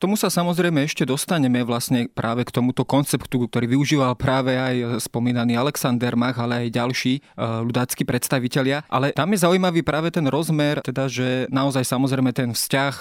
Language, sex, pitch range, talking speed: Slovak, male, 125-145 Hz, 160 wpm